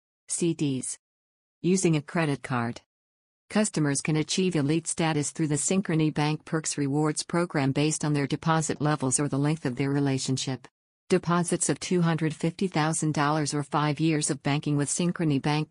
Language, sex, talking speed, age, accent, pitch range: English, female, 150 wpm, 50-69, American, 140-165 Hz